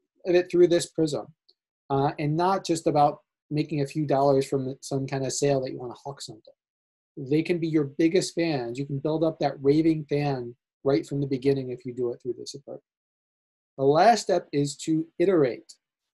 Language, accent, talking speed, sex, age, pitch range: English, American, 205 wpm, male, 30-49, 140-180 Hz